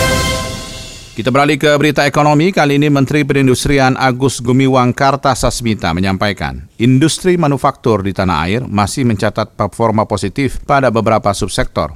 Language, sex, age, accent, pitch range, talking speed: Indonesian, male, 40-59, native, 100-125 Hz, 125 wpm